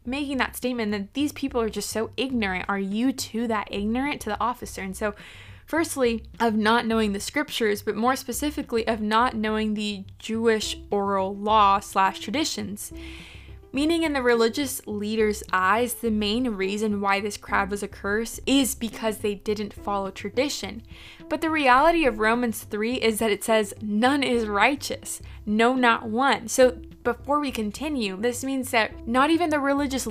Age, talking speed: 20-39, 170 wpm